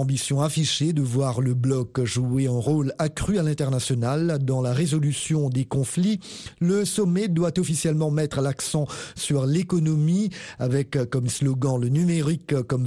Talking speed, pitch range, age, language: 145 wpm, 135-170 Hz, 50-69, Italian